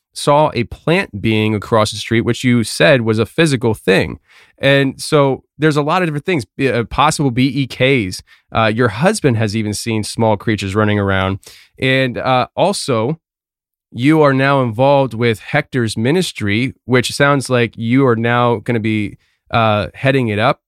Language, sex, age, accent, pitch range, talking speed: English, male, 20-39, American, 110-135 Hz, 160 wpm